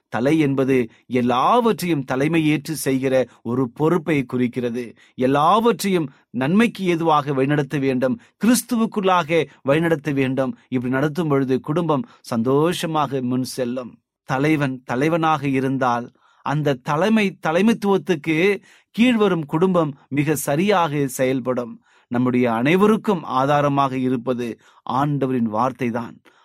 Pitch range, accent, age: 130-170 Hz, native, 30-49